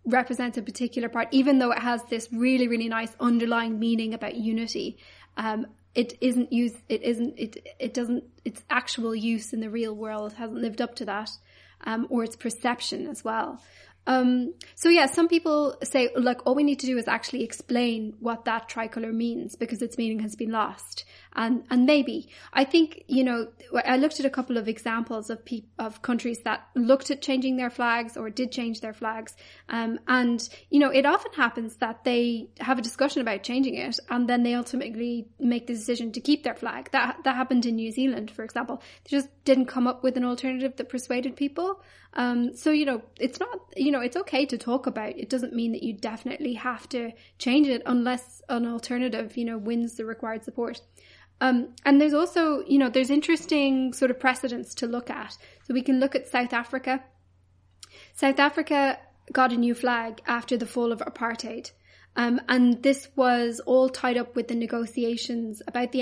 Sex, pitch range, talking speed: female, 230-260 Hz, 200 wpm